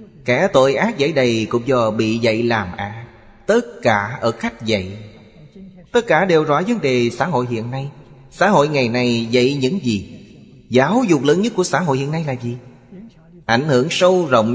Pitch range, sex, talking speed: 100-130 Hz, male, 200 wpm